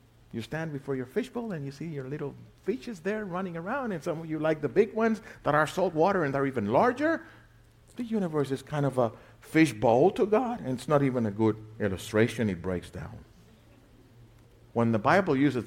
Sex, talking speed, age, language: male, 205 wpm, 60-79, English